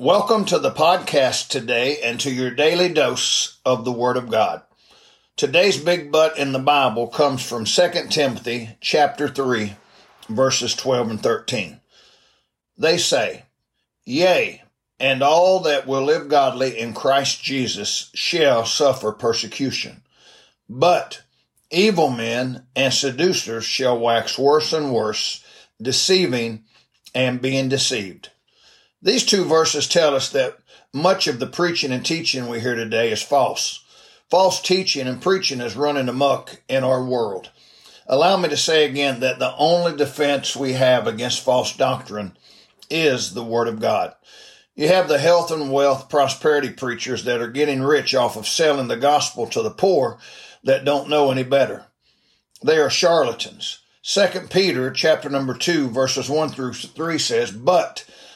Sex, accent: male, American